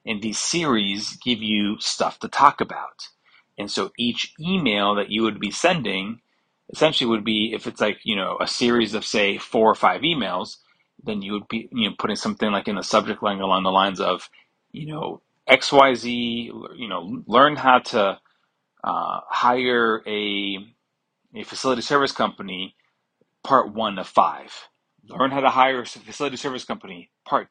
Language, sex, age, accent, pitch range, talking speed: English, male, 30-49, American, 105-125 Hz, 175 wpm